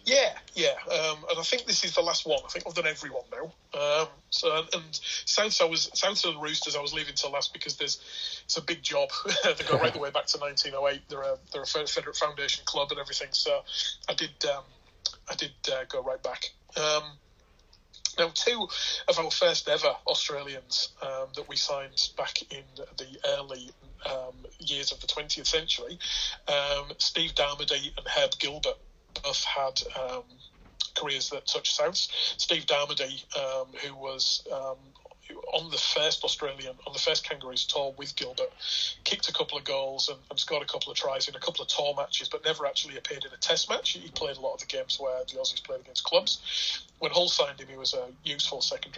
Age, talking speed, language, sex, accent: 30-49, 200 wpm, English, male, British